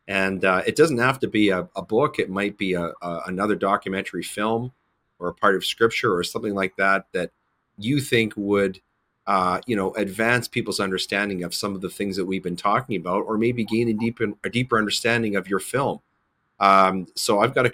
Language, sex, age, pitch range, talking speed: English, male, 40-59, 95-115 Hz, 215 wpm